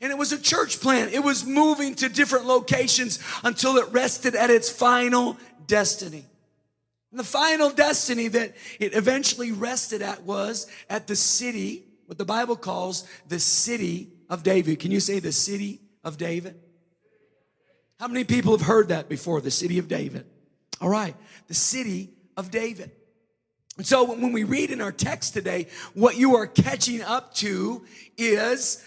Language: English